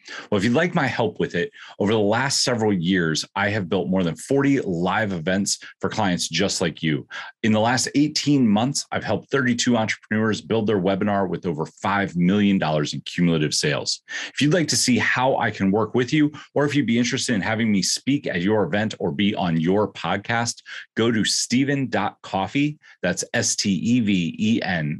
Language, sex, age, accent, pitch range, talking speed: English, male, 30-49, American, 90-120 Hz, 185 wpm